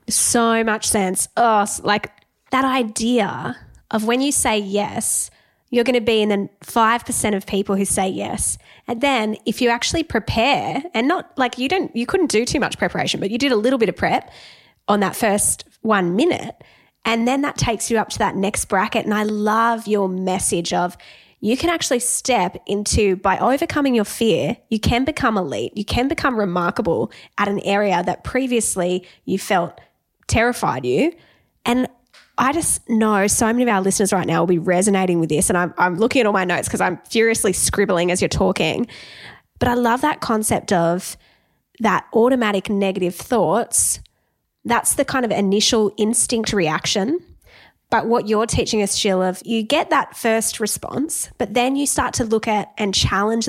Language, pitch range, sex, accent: English, 200-245 Hz, female, Australian